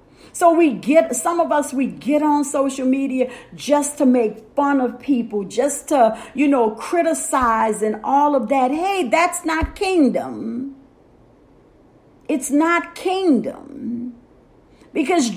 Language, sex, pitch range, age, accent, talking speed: English, female, 245-320 Hz, 50-69, American, 135 wpm